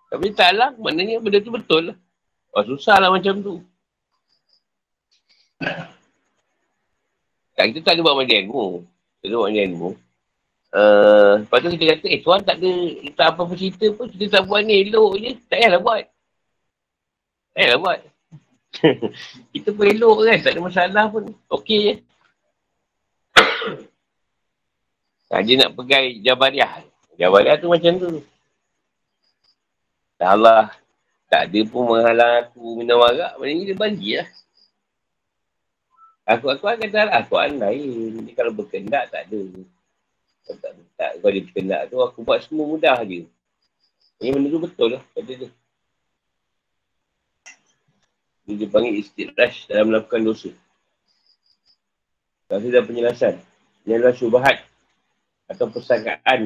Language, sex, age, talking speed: Malay, male, 50-69, 135 wpm